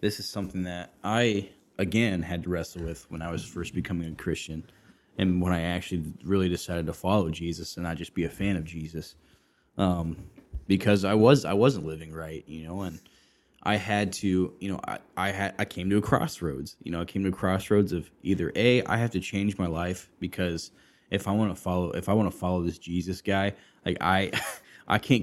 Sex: male